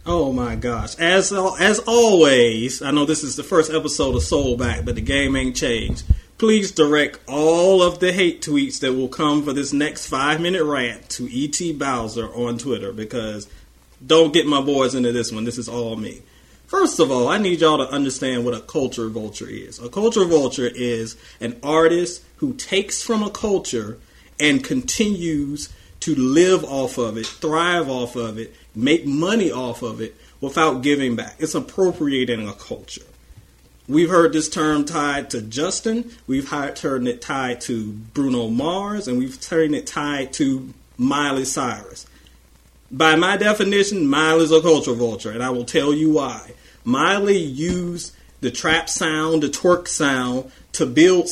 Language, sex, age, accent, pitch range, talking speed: English, male, 40-59, American, 120-170 Hz, 170 wpm